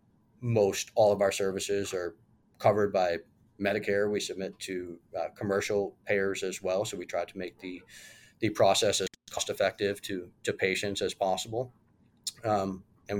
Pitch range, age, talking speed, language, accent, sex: 95-110 Hz, 30-49, 160 wpm, English, American, male